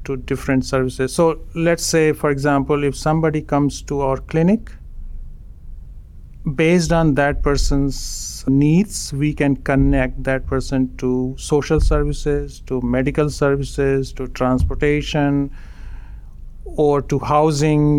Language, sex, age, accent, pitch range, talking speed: English, male, 50-69, Indian, 130-150 Hz, 115 wpm